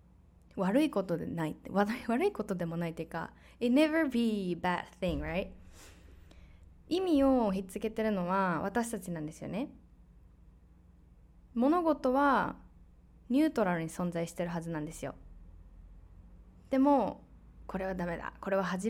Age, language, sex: 20-39, Japanese, female